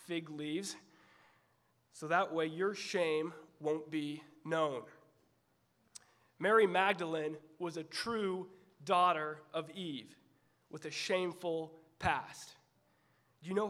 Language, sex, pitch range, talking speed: English, male, 160-210 Hz, 110 wpm